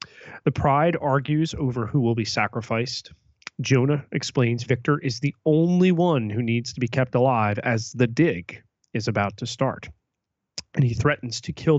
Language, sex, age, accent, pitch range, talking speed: English, male, 30-49, American, 115-140 Hz, 170 wpm